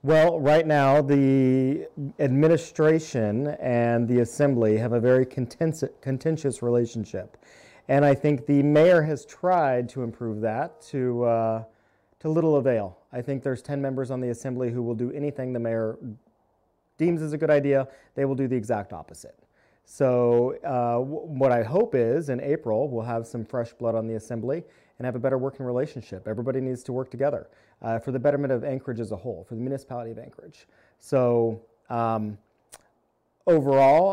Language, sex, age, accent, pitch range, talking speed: English, male, 30-49, American, 115-140 Hz, 170 wpm